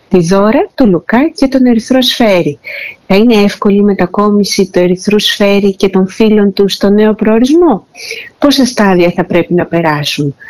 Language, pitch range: Greek, 180-240 Hz